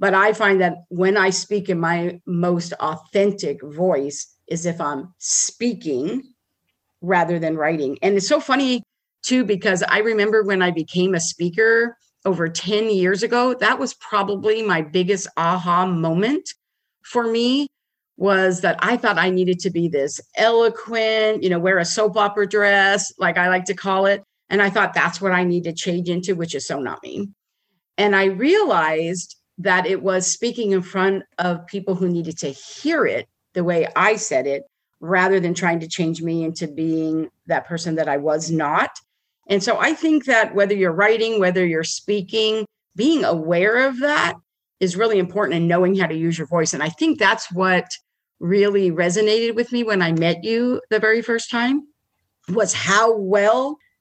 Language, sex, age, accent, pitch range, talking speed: English, female, 50-69, American, 175-215 Hz, 180 wpm